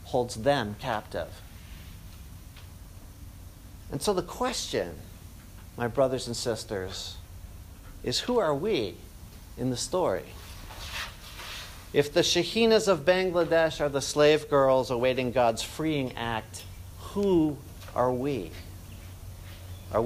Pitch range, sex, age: 90-145 Hz, male, 50-69